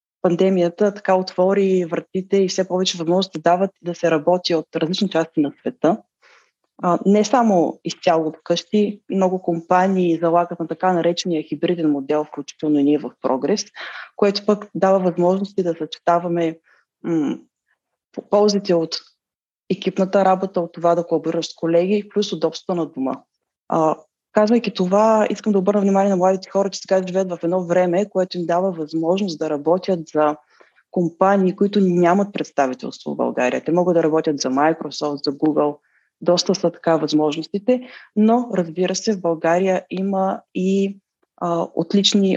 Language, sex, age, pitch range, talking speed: Bulgarian, female, 20-39, 165-195 Hz, 150 wpm